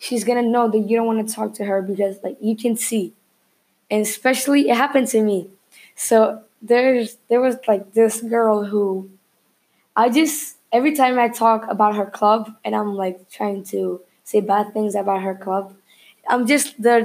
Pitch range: 205-245 Hz